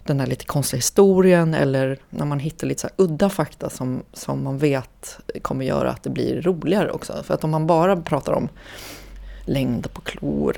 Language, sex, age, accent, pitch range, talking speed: Swedish, female, 30-49, native, 140-185 Hz, 200 wpm